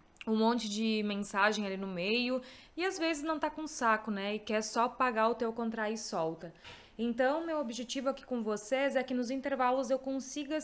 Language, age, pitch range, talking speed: Portuguese, 20-39, 230-275 Hz, 205 wpm